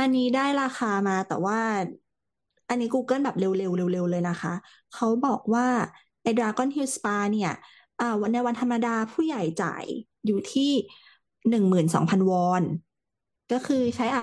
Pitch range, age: 190-245 Hz, 20-39